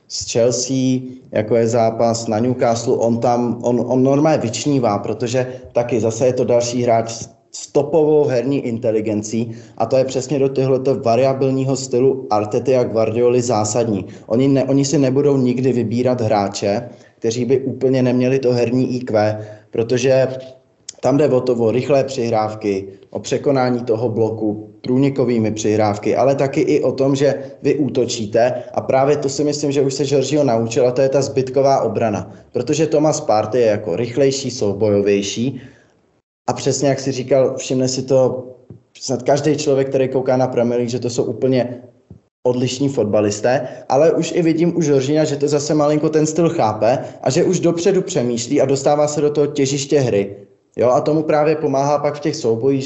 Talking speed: 170 wpm